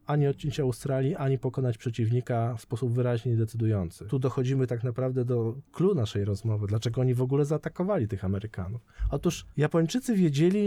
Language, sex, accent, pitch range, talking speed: Polish, male, native, 120-160 Hz, 155 wpm